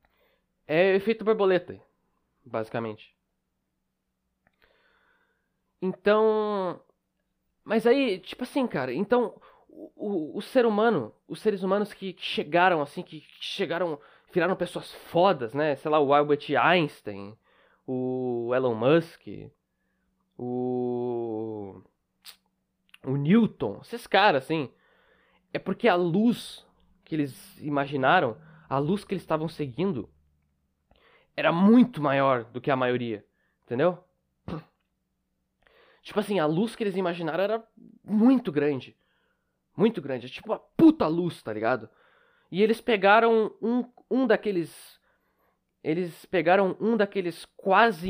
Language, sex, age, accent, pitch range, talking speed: Portuguese, male, 20-39, Brazilian, 140-215 Hz, 115 wpm